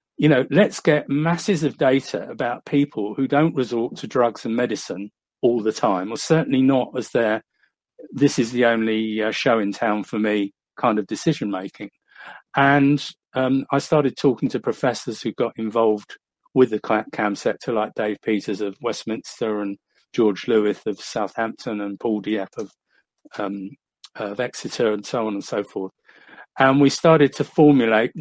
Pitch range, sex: 115-145 Hz, male